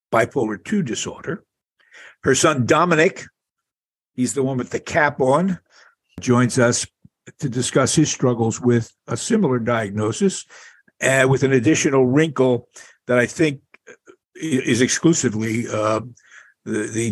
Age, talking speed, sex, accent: 60-79, 125 wpm, male, American